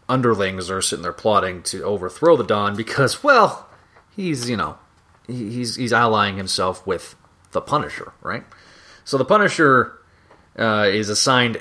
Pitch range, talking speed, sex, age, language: 95-125 Hz, 145 wpm, male, 30-49, English